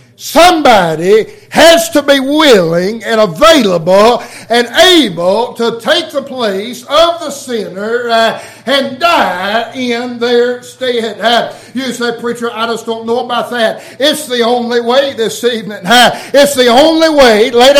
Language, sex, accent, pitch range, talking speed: English, male, American, 230-255 Hz, 150 wpm